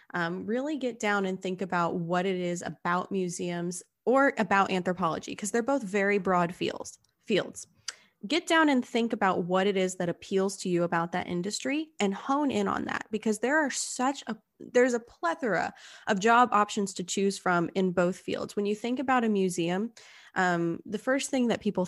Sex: female